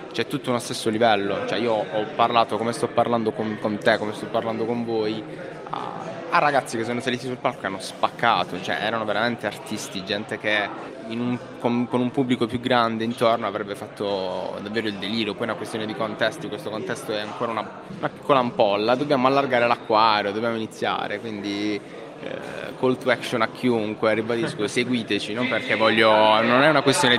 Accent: native